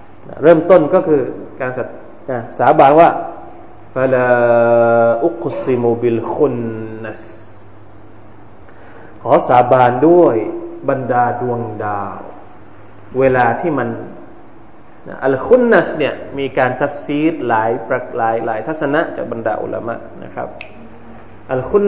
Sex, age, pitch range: male, 20-39, 115-155 Hz